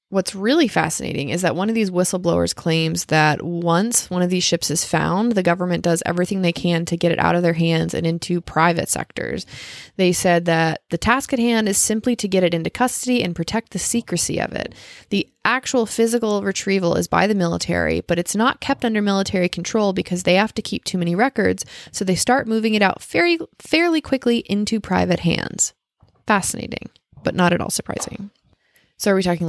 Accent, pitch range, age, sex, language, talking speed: American, 170-220 Hz, 20-39, female, English, 200 wpm